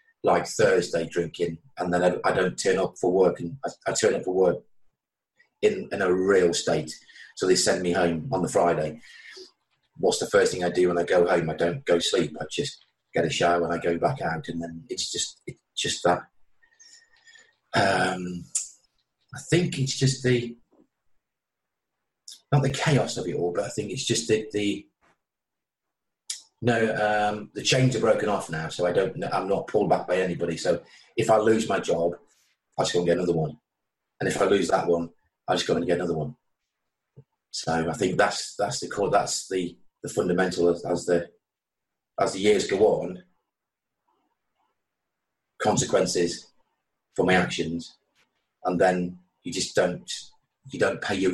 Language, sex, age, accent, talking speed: English, male, 30-49, British, 185 wpm